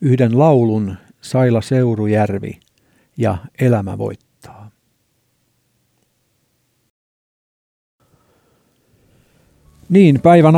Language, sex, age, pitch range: Finnish, male, 60-79, 105-130 Hz